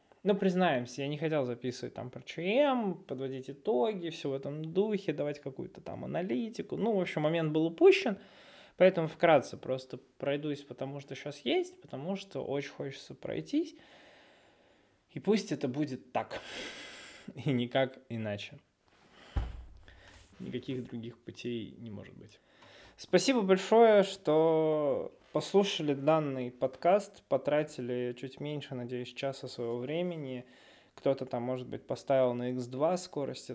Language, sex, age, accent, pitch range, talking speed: Russian, male, 20-39, native, 120-155 Hz, 130 wpm